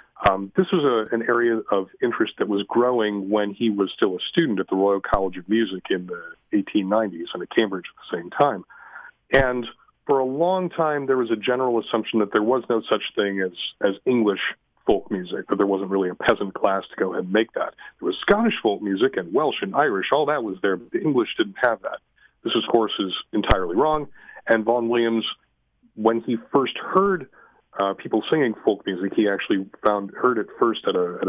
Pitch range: 100-125 Hz